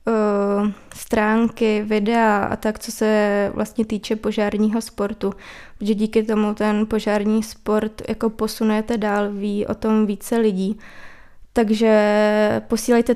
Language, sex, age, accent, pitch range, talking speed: Czech, female, 20-39, native, 210-225 Hz, 120 wpm